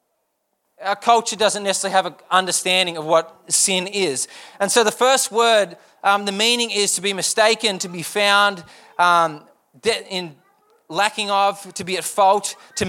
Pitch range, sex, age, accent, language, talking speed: 190-225 Hz, male, 20-39, Australian, English, 165 wpm